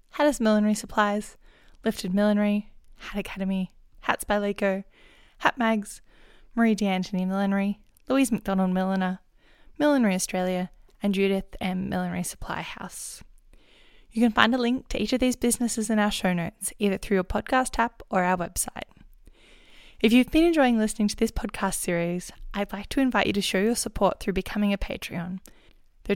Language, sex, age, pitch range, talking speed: English, female, 10-29, 190-225 Hz, 165 wpm